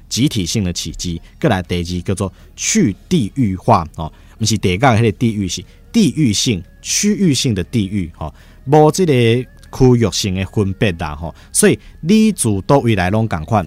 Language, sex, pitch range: Chinese, male, 85-115 Hz